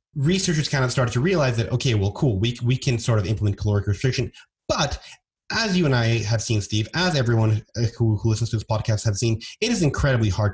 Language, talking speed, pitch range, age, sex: English, 230 wpm, 100-120 Hz, 30-49, male